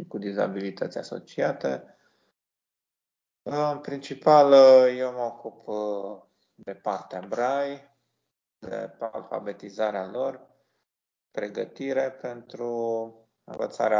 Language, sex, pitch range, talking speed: Romanian, male, 100-120 Hz, 75 wpm